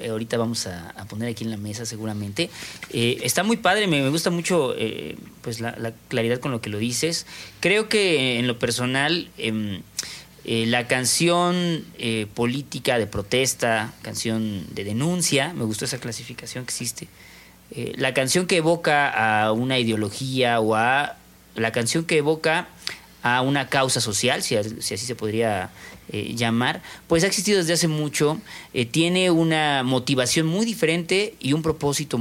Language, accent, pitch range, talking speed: Spanish, Mexican, 115-160 Hz, 170 wpm